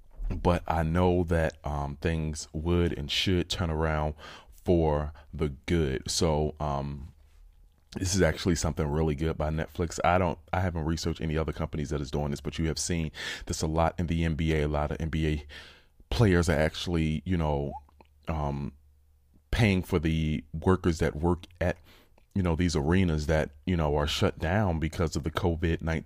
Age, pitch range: 30-49, 75-85 Hz